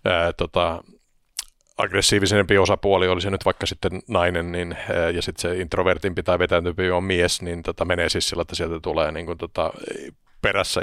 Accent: native